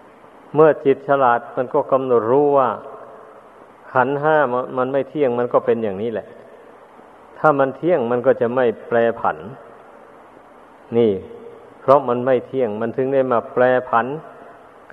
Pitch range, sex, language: 120-140 Hz, male, Thai